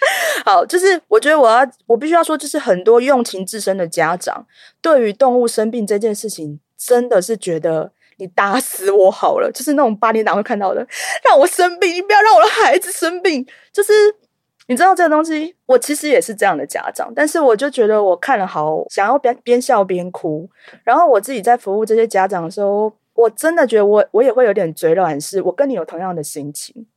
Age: 20-39